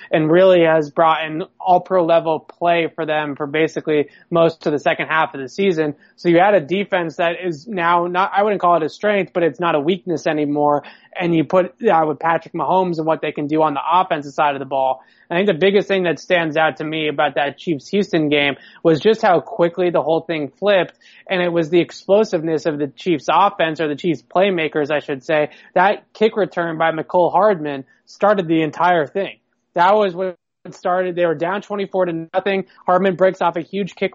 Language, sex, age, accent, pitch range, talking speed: English, male, 20-39, American, 155-180 Hz, 220 wpm